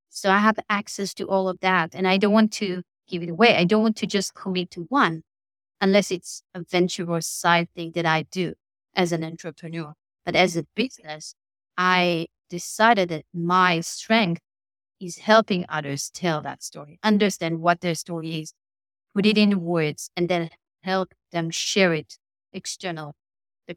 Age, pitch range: 30-49, 165-200 Hz